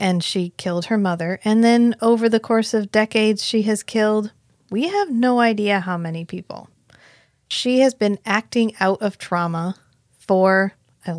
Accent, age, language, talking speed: American, 30-49, English, 165 wpm